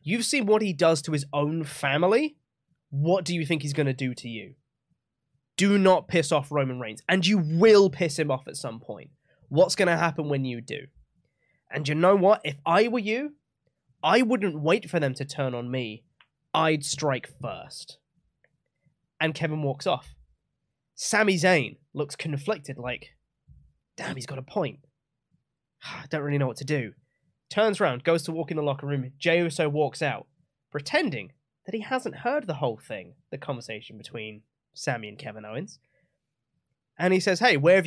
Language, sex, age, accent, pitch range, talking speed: English, male, 20-39, British, 130-170 Hz, 185 wpm